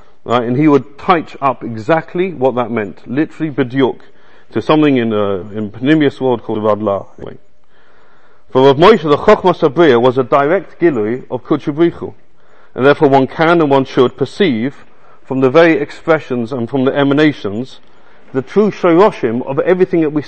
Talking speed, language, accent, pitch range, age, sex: 170 wpm, English, British, 125-165 Hz, 40-59, male